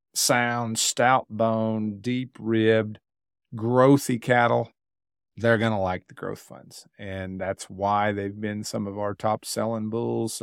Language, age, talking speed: English, 50-69, 145 wpm